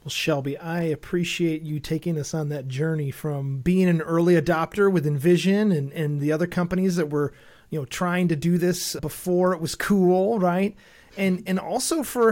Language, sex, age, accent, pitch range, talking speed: English, male, 30-49, American, 160-205 Hz, 190 wpm